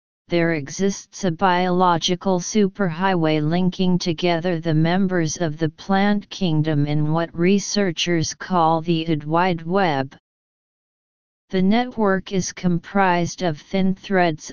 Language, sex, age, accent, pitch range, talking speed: English, female, 40-59, American, 160-190 Hz, 115 wpm